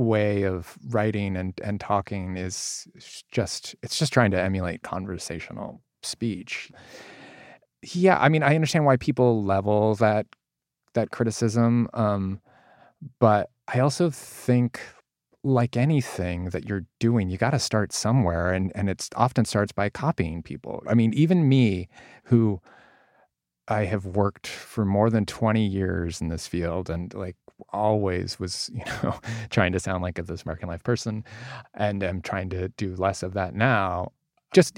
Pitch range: 95-125 Hz